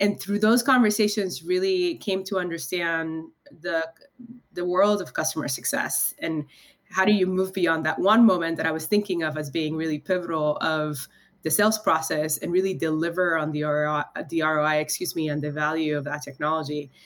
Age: 20-39